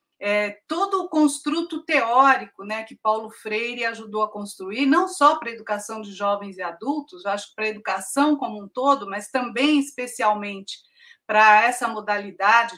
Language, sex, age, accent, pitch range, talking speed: Portuguese, female, 50-69, Brazilian, 215-265 Hz, 170 wpm